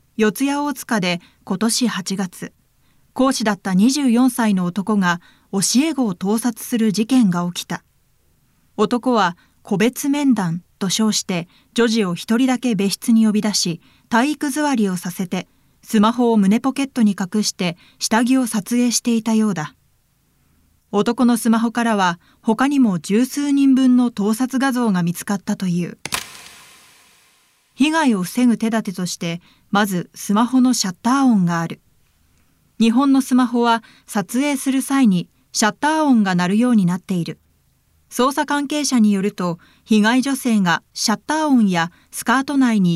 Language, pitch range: Japanese, 195-255 Hz